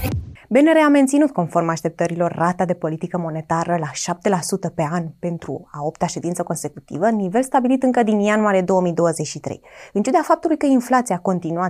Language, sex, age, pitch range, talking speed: Romanian, female, 20-39, 170-260 Hz, 155 wpm